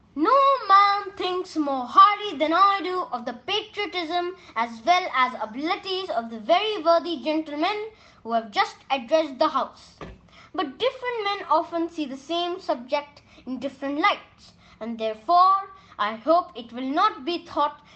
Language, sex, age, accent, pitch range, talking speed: English, female, 20-39, Indian, 275-375 Hz, 155 wpm